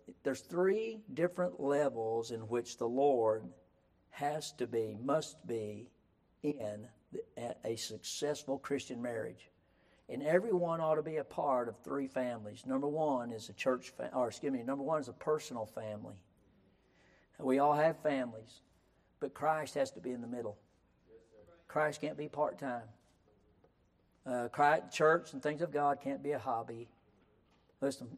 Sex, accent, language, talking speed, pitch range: male, American, English, 150 wpm, 105-145 Hz